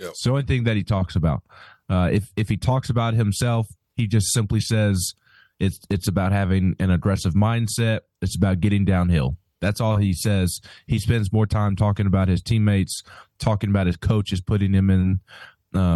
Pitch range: 95-115 Hz